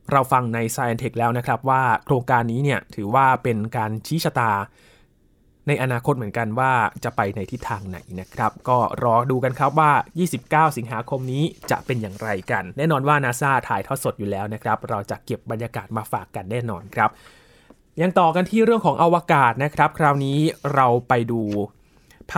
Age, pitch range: 20-39, 115-150 Hz